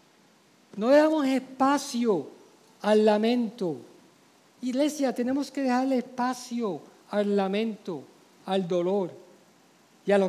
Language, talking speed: Spanish, 100 wpm